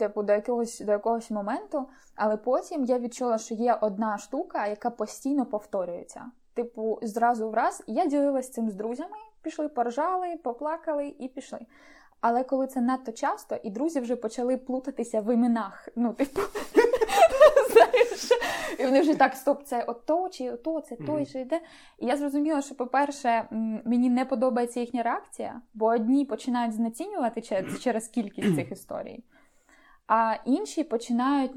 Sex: female